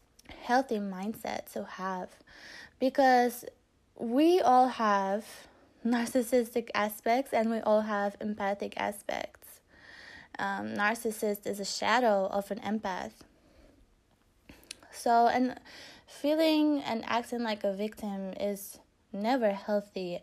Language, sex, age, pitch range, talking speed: English, female, 20-39, 200-240 Hz, 105 wpm